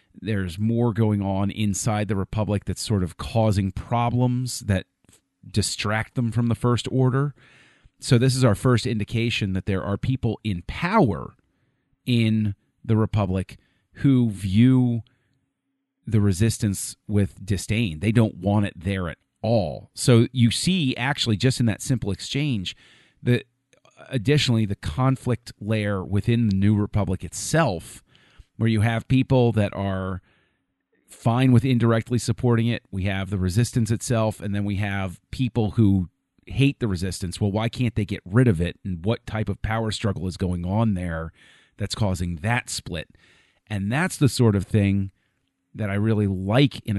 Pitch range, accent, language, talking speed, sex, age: 100-120 Hz, American, English, 160 wpm, male, 40-59